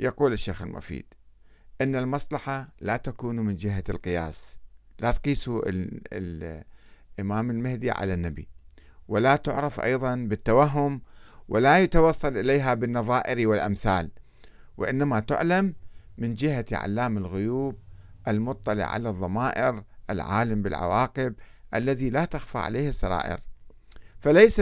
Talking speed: 100 wpm